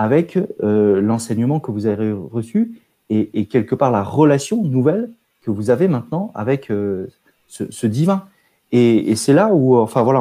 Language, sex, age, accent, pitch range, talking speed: French, male, 30-49, French, 115-165 Hz, 175 wpm